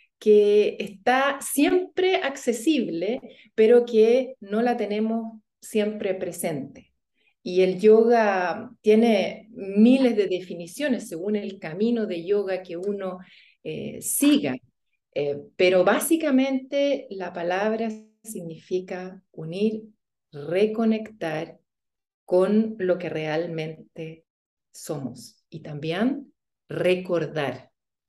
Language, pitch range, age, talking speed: Spanish, 170-220 Hz, 40-59, 90 wpm